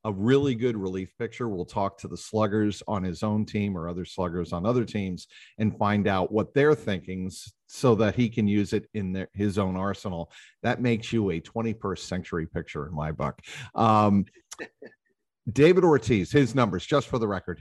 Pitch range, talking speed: 95-115 Hz, 185 wpm